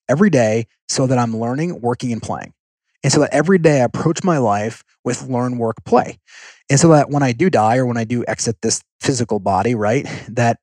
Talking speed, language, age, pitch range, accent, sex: 220 wpm, English, 30-49, 115-145 Hz, American, male